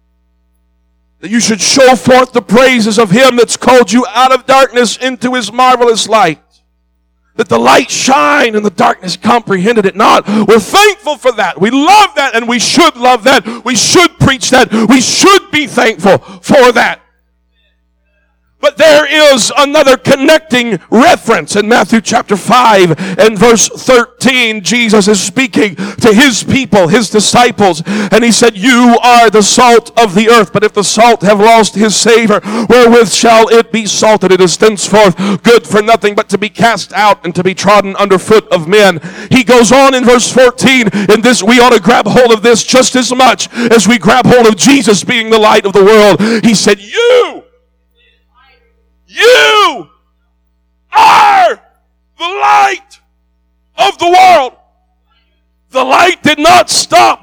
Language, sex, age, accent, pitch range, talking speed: English, male, 50-69, American, 195-255 Hz, 165 wpm